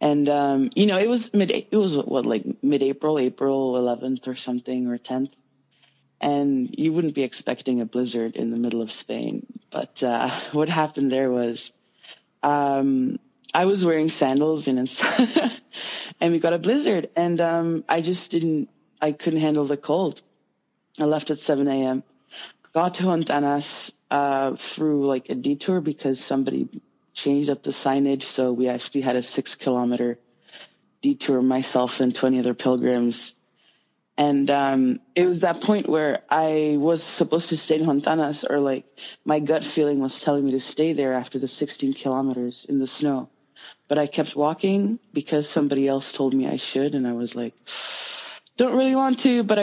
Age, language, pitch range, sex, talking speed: 20-39, English, 135-170 Hz, female, 175 wpm